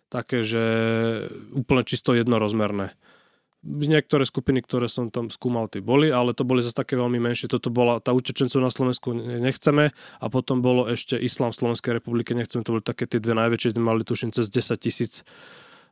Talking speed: 175 wpm